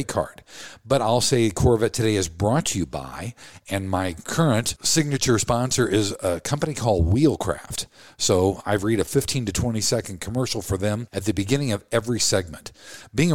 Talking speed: 175 wpm